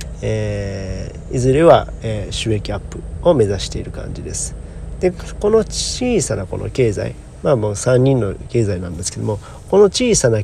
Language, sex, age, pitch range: Japanese, male, 40-59, 95-130 Hz